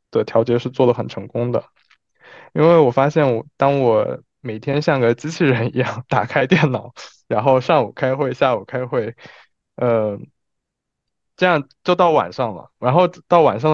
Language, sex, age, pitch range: Chinese, male, 20-39, 115-145 Hz